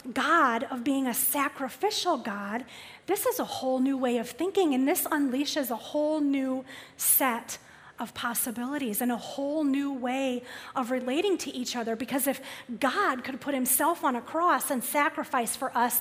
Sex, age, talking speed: female, 30-49, 170 wpm